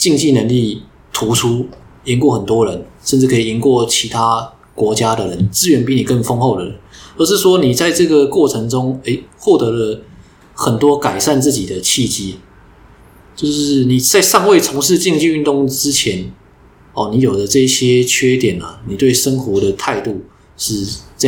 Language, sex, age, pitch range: Chinese, male, 20-39, 110-140 Hz